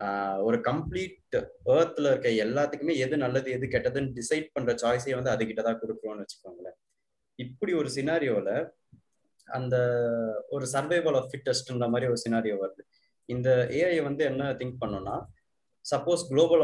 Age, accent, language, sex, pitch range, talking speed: 20-39, native, Tamil, male, 115-145 Hz, 135 wpm